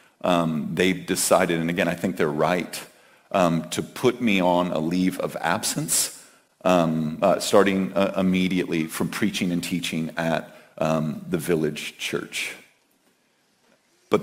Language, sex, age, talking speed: English, male, 40-59, 140 wpm